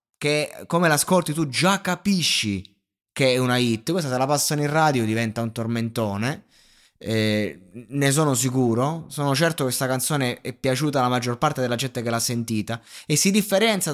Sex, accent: male, native